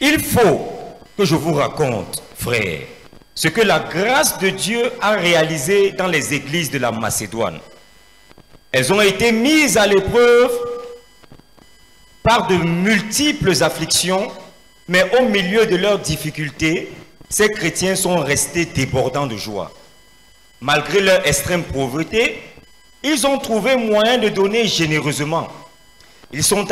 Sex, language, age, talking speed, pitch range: male, English, 50-69, 130 wpm, 150-230 Hz